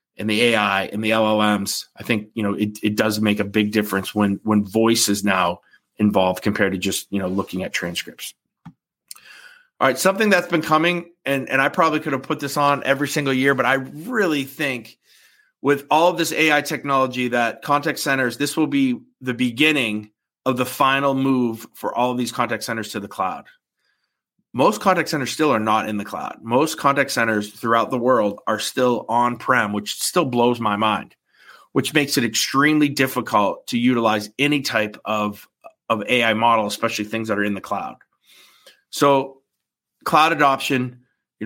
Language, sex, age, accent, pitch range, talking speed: English, male, 30-49, American, 110-140 Hz, 185 wpm